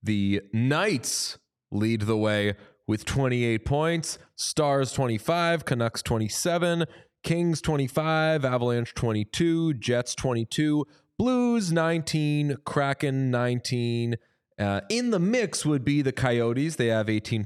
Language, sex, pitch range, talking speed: English, male, 120-165 Hz, 115 wpm